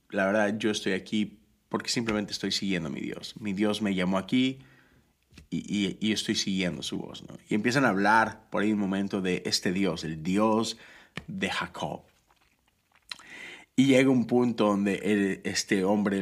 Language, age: Spanish, 30-49